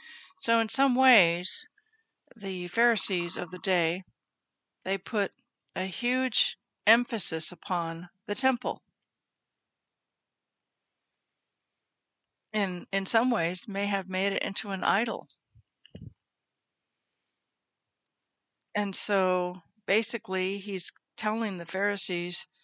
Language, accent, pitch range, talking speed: English, American, 180-220 Hz, 95 wpm